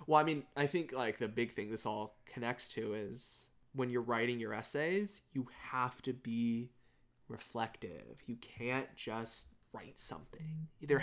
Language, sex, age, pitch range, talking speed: English, male, 20-39, 115-140 Hz, 165 wpm